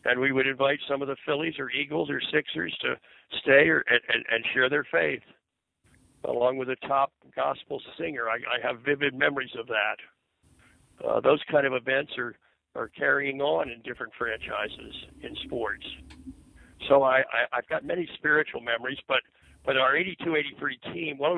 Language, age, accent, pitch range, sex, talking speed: English, 60-79, American, 130-150 Hz, male, 165 wpm